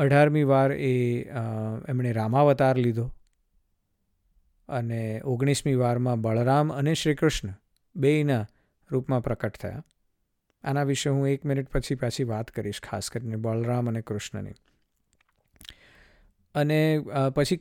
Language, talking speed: Gujarati, 125 wpm